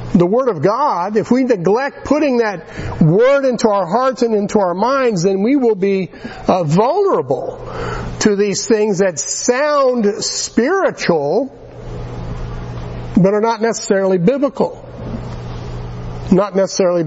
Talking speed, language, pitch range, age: 125 wpm, English, 140-235 Hz, 60-79